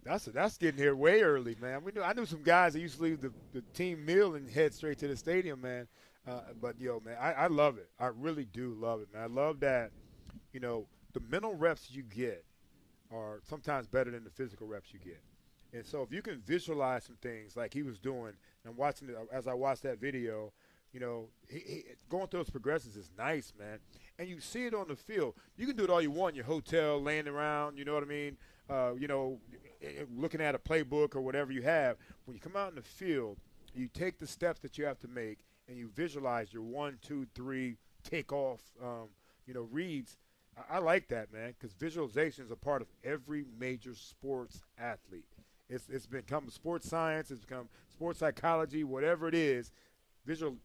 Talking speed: 220 wpm